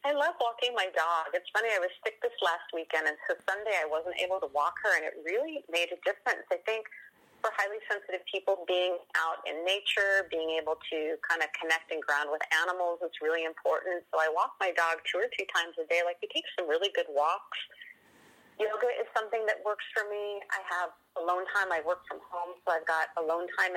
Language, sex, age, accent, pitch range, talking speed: English, female, 30-49, American, 165-215 Hz, 225 wpm